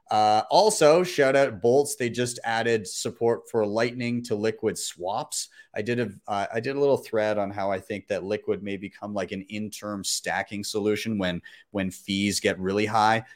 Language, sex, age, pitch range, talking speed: English, male, 30-49, 105-125 Hz, 190 wpm